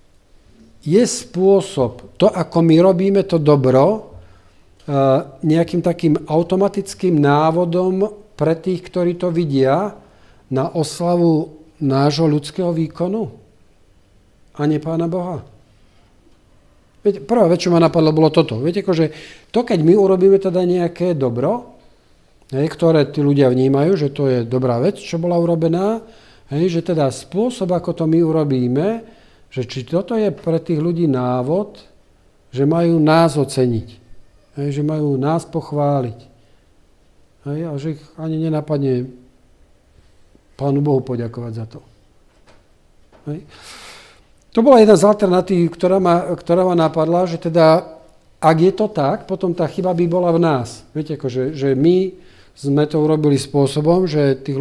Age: 50-69